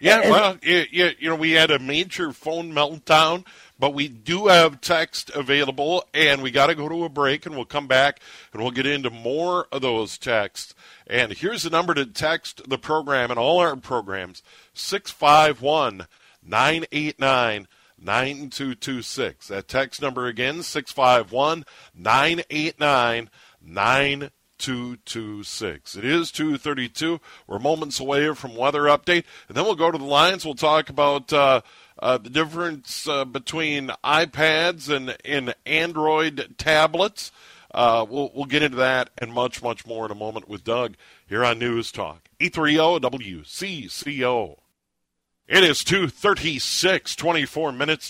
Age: 50-69